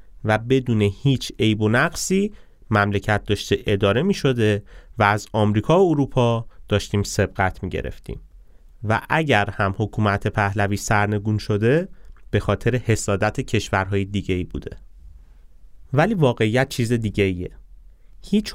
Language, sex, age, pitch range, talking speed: Persian, male, 30-49, 100-130 Hz, 125 wpm